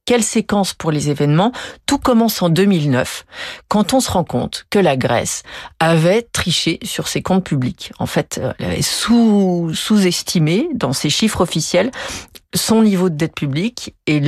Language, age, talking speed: French, 40-59, 165 wpm